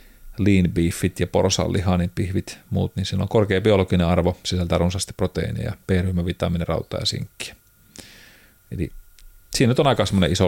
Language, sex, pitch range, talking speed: Finnish, male, 90-105 Hz, 145 wpm